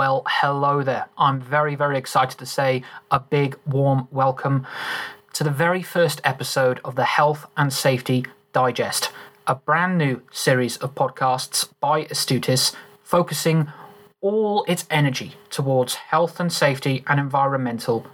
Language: English